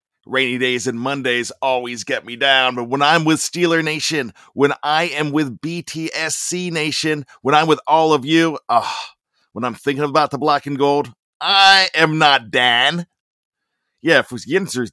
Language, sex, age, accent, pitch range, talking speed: English, male, 40-59, American, 140-185 Hz, 165 wpm